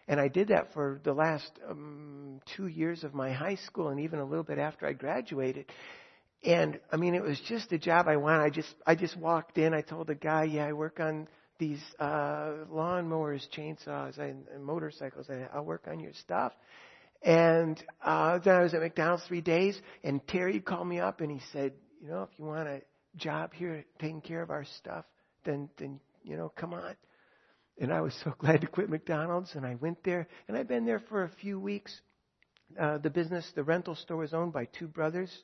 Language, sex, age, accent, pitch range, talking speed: English, male, 60-79, American, 145-165 Hz, 215 wpm